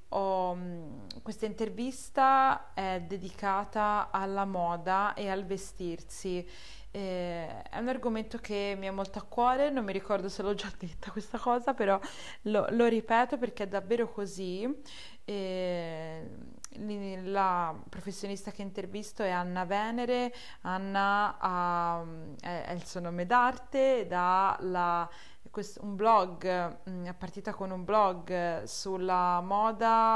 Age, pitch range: 20-39, 180-210 Hz